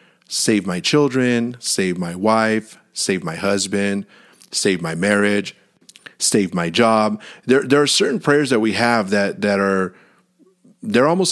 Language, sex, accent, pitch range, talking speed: English, male, American, 100-140 Hz, 150 wpm